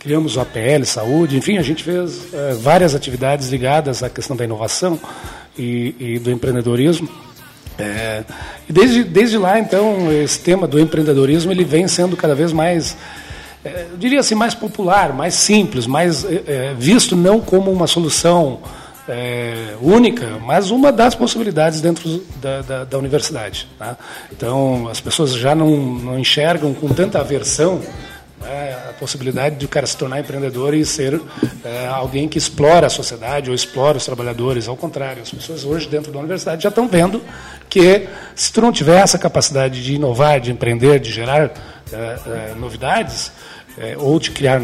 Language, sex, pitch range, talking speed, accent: Portuguese, male, 130-175 Hz, 160 wpm, Brazilian